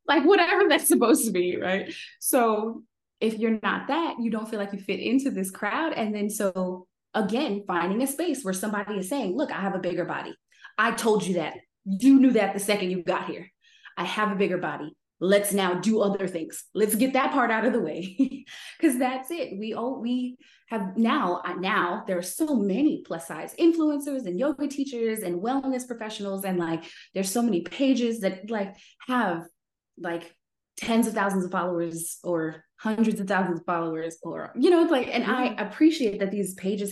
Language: English